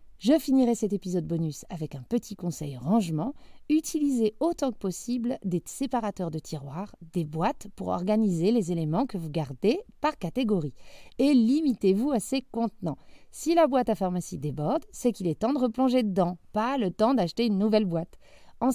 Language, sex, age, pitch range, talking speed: French, female, 30-49, 180-270 Hz, 175 wpm